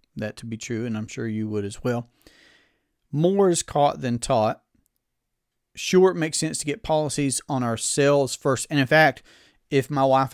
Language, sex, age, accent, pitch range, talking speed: English, male, 40-59, American, 120-140 Hz, 185 wpm